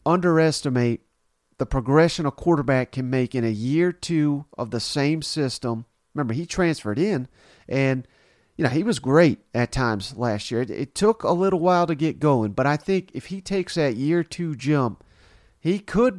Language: English